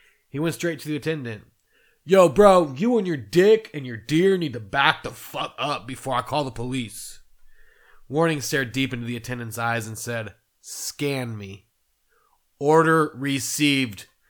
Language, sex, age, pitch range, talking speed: English, male, 30-49, 120-170 Hz, 165 wpm